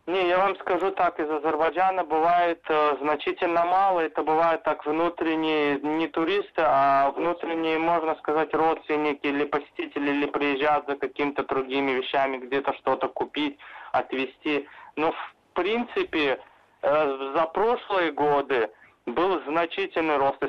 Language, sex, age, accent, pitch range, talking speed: Russian, male, 20-39, native, 140-165 Hz, 130 wpm